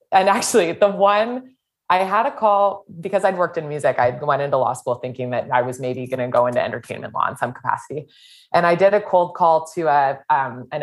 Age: 20-39